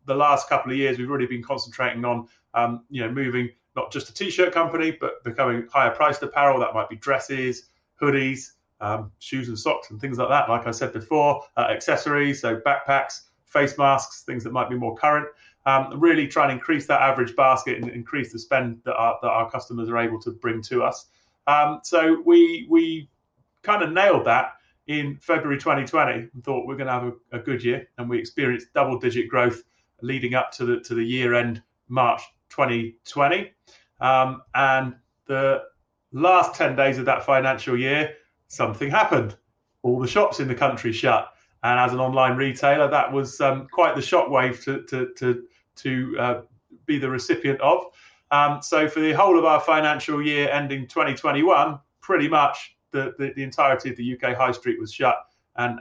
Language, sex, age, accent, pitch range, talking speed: English, male, 30-49, British, 120-145 Hz, 190 wpm